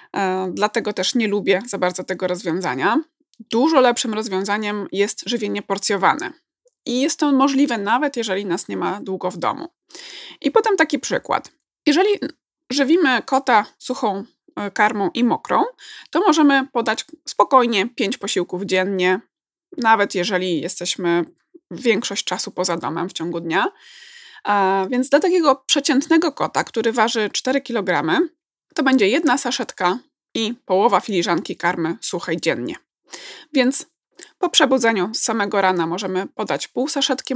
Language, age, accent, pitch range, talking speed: Polish, 20-39, native, 190-280 Hz, 135 wpm